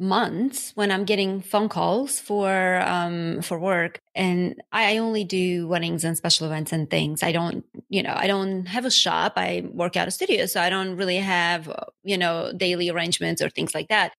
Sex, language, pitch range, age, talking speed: female, English, 180-225 Hz, 20-39, 200 wpm